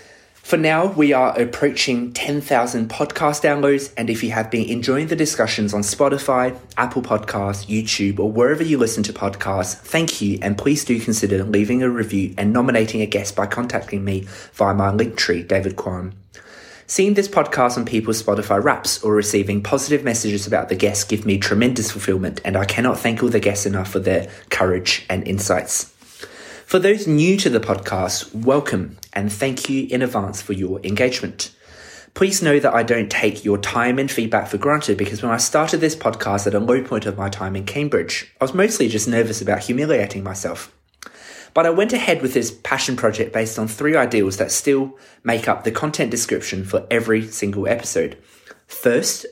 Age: 20-39